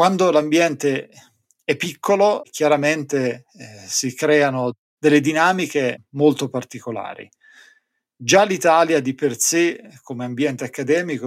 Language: Italian